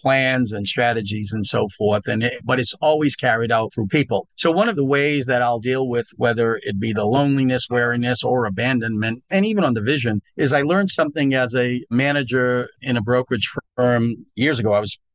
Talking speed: 205 wpm